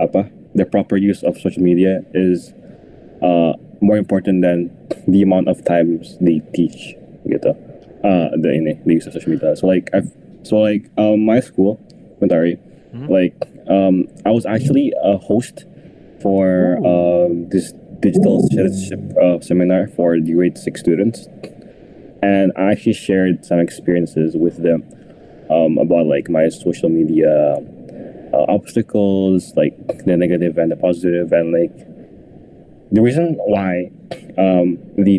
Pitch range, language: 85-100 Hz, Indonesian